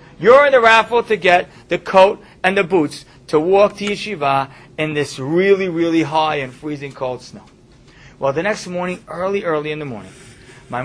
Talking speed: 190 wpm